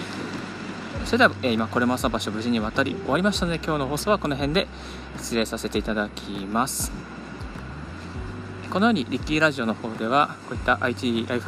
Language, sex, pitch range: Japanese, male, 110-155 Hz